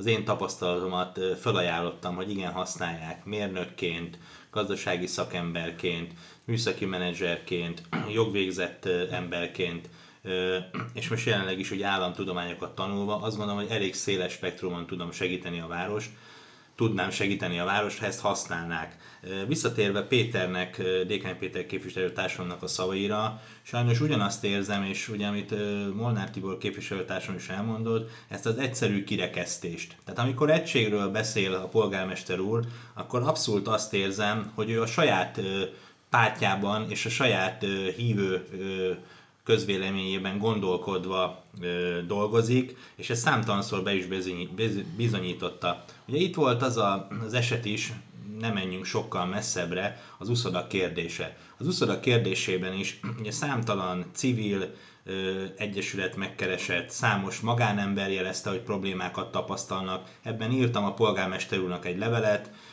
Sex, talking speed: male, 120 wpm